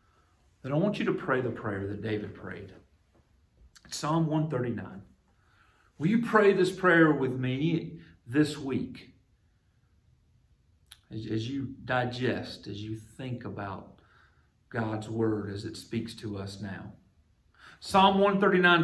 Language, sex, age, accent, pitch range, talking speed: English, male, 40-59, American, 95-130 Hz, 125 wpm